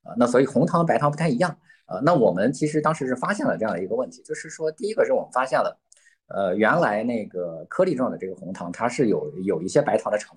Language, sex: Chinese, male